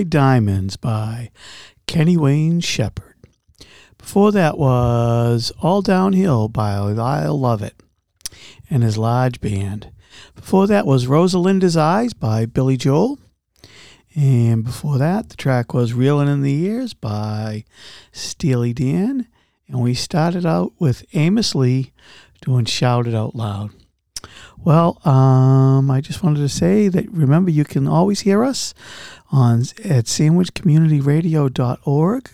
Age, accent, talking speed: 50-69, American, 125 wpm